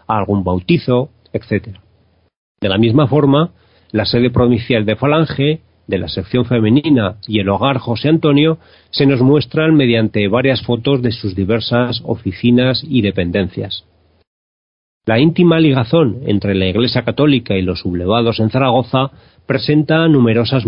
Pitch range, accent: 100-130 Hz, Spanish